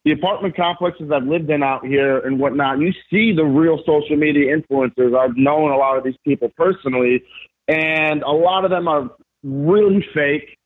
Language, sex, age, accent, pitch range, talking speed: English, male, 40-59, American, 135-165 Hz, 185 wpm